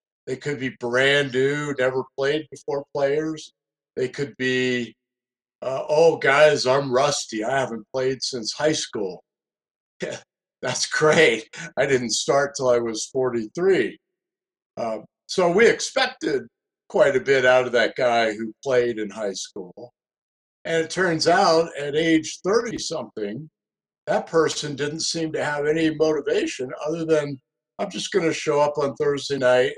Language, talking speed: English, 150 wpm